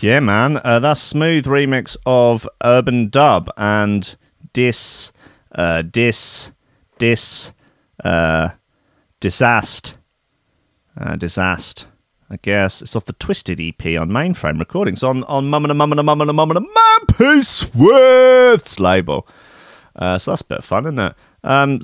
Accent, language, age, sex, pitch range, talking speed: British, English, 30-49, male, 95-135 Hz, 125 wpm